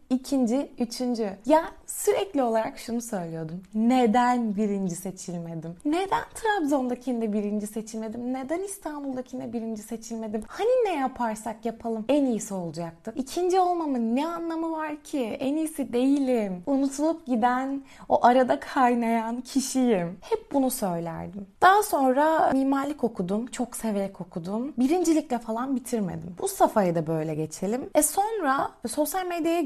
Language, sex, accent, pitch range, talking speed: Turkish, female, native, 220-300 Hz, 125 wpm